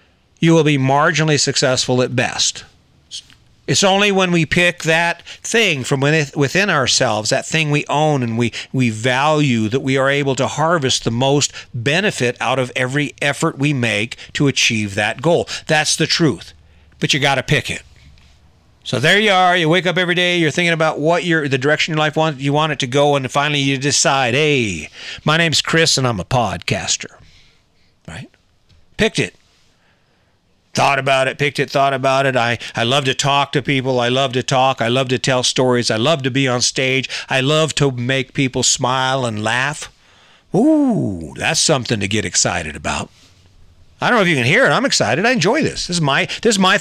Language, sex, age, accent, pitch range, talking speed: English, male, 50-69, American, 120-160 Hz, 200 wpm